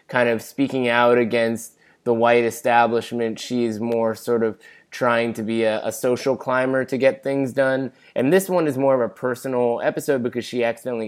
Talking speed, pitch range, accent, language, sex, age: 195 wpm, 115-135 Hz, American, English, male, 20-39